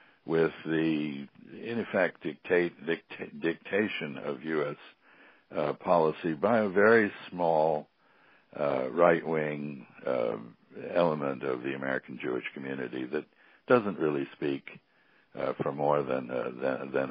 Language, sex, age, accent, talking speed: English, male, 60-79, American, 120 wpm